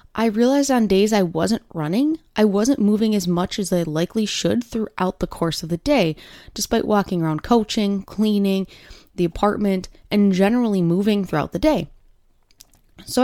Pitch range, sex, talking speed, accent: 185-235 Hz, female, 165 wpm, American